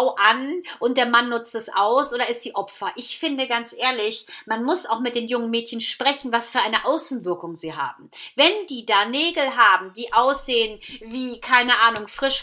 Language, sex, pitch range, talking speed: German, female, 225-270 Hz, 195 wpm